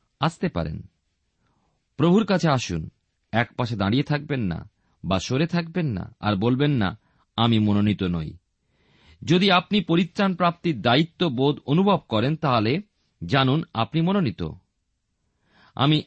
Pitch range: 110-175 Hz